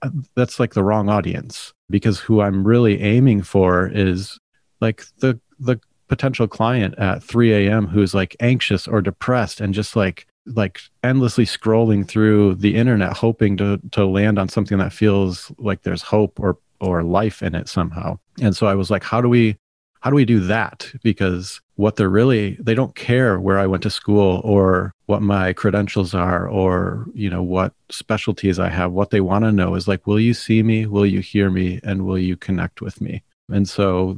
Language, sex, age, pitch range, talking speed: English, male, 30-49, 95-110 Hz, 195 wpm